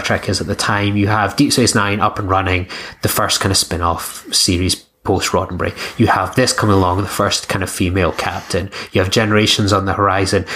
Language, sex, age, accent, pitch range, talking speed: English, male, 20-39, British, 100-110 Hz, 215 wpm